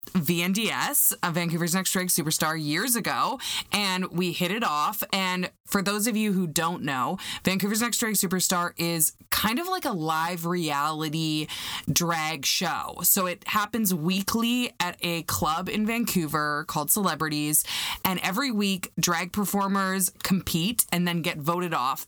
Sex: female